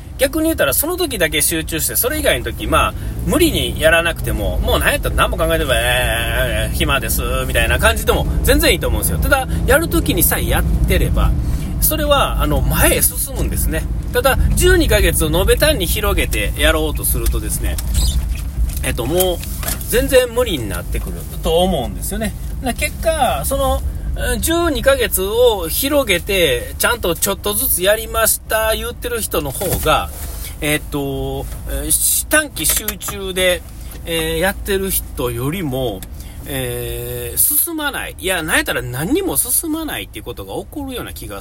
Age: 40-59